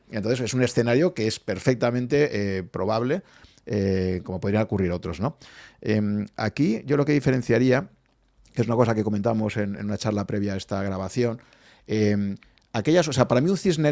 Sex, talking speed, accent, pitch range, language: male, 185 wpm, Spanish, 105-125 Hz, Spanish